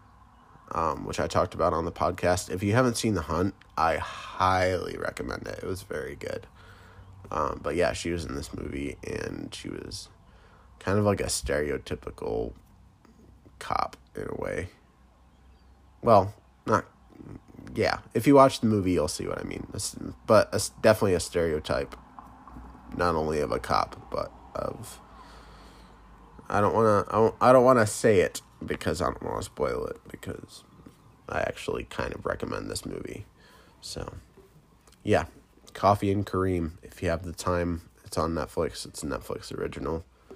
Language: English